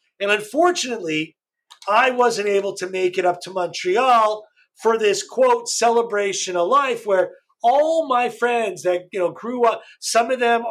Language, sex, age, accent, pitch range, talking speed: English, male, 40-59, American, 170-235 Hz, 165 wpm